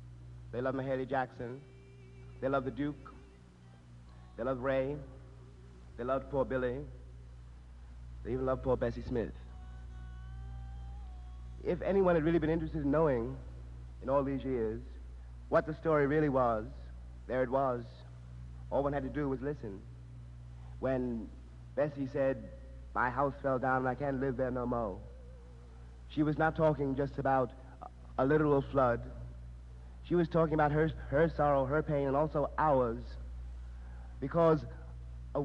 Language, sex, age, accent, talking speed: English, male, 50-69, American, 145 wpm